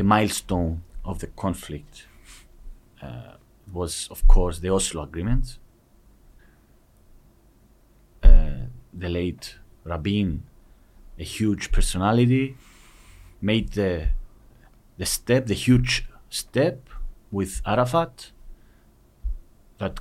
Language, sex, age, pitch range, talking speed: Greek, male, 40-59, 85-120 Hz, 85 wpm